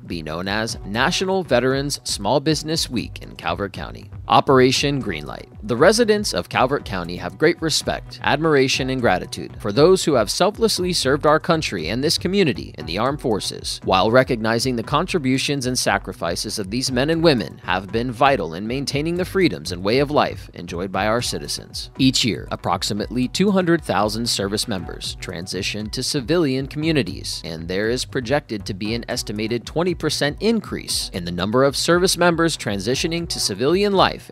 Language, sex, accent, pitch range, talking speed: English, male, American, 100-145 Hz, 170 wpm